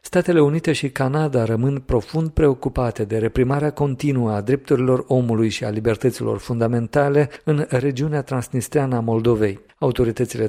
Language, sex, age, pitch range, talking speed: Romanian, male, 50-69, 115-145 Hz, 125 wpm